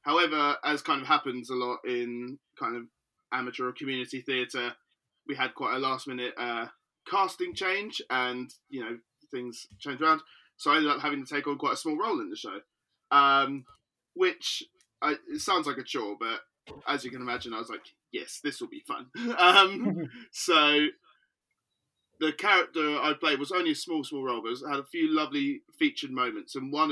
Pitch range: 125-180 Hz